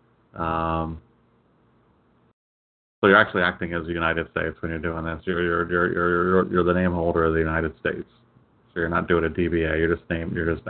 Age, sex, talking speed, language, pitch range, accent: 30-49, male, 210 wpm, English, 85-100 Hz, American